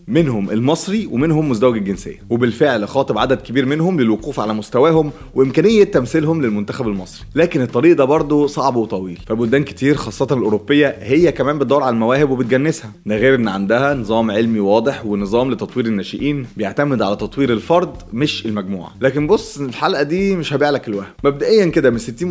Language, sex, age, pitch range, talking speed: Arabic, male, 20-39, 110-150 Hz, 160 wpm